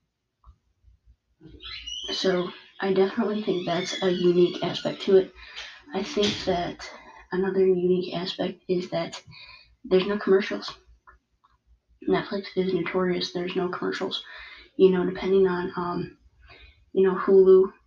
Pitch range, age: 175-195 Hz, 20-39